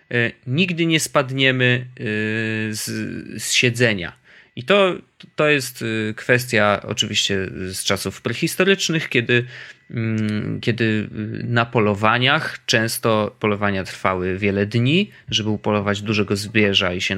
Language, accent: Polish, native